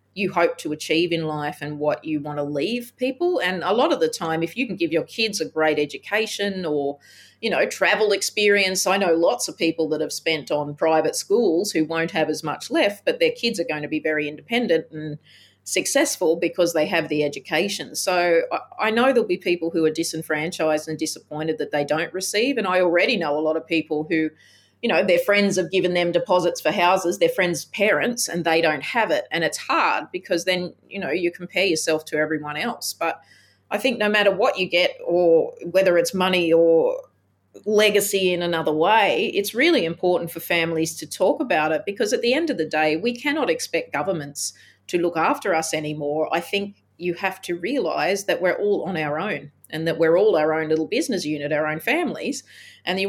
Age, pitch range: 30-49, 160-200 Hz